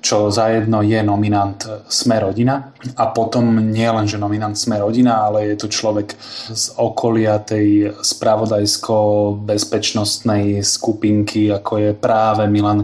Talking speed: 130 wpm